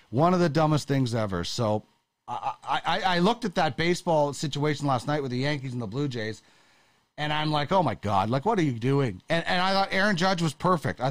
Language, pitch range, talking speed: English, 145-195 Hz, 240 wpm